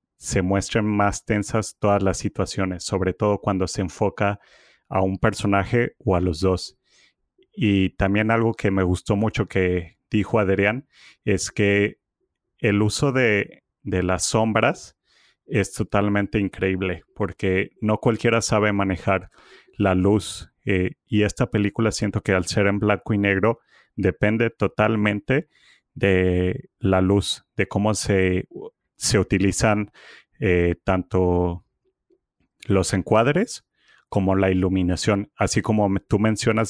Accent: Mexican